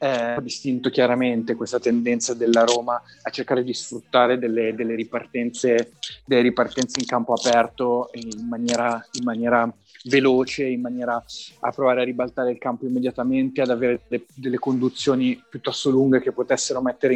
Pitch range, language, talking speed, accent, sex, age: 120-140 Hz, Italian, 135 wpm, native, male, 30-49